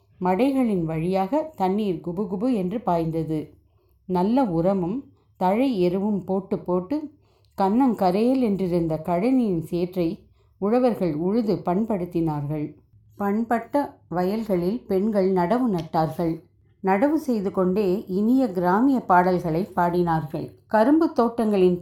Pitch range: 175-230 Hz